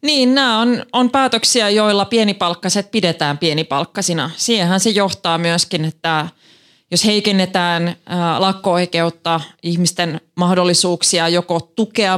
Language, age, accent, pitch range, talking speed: Finnish, 20-39, native, 165-200 Hz, 105 wpm